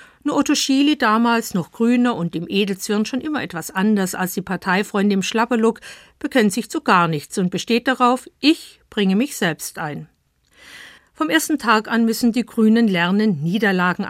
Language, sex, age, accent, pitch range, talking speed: German, female, 50-69, German, 185-245 Hz, 170 wpm